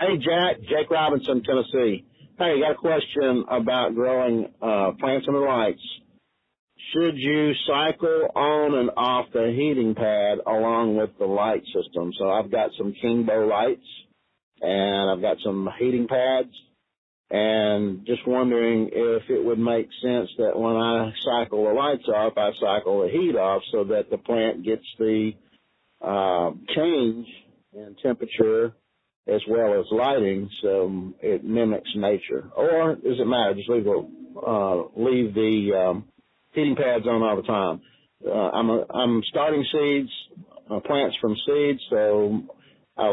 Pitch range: 105-140 Hz